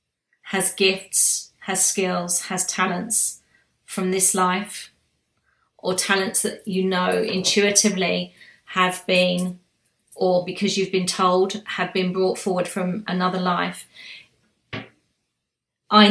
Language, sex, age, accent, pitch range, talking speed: English, female, 30-49, British, 180-205 Hz, 110 wpm